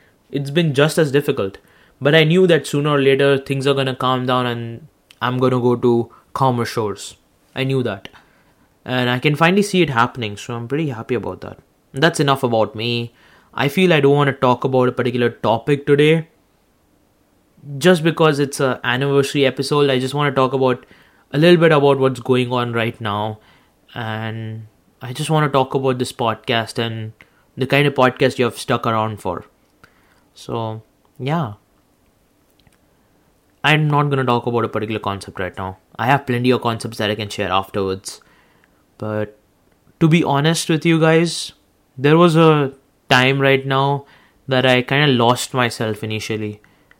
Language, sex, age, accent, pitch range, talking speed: English, male, 20-39, Indian, 115-140 Hz, 180 wpm